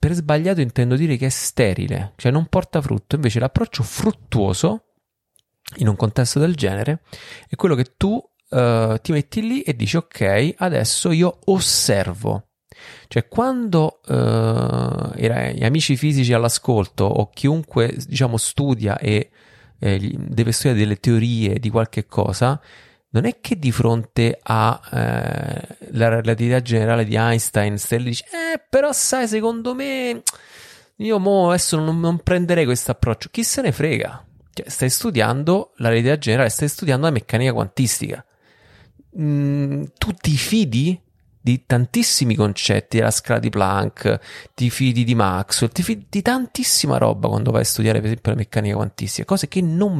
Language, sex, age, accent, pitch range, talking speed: Italian, male, 30-49, native, 115-165 Hz, 155 wpm